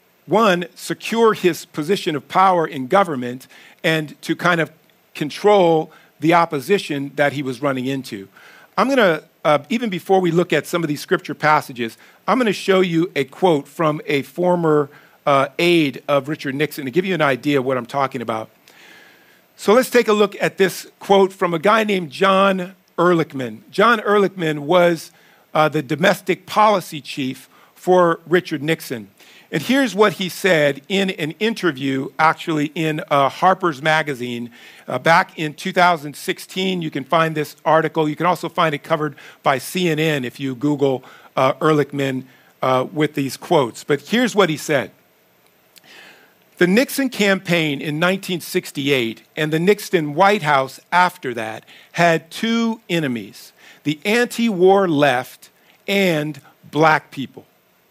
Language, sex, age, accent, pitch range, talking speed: English, male, 50-69, American, 145-185 Hz, 155 wpm